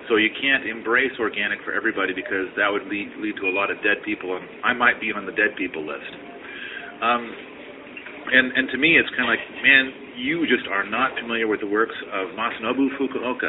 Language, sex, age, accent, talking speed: English, male, 40-59, American, 215 wpm